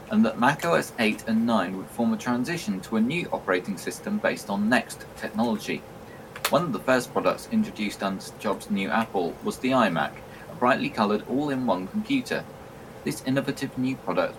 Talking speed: 175 wpm